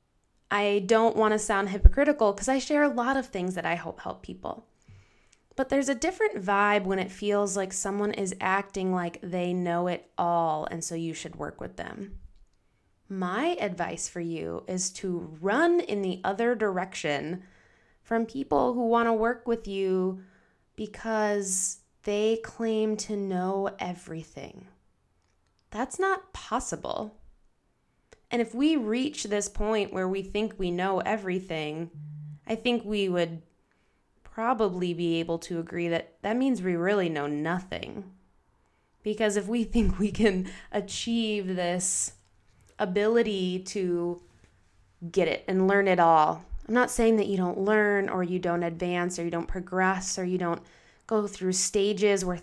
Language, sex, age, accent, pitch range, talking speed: English, female, 20-39, American, 170-215 Hz, 155 wpm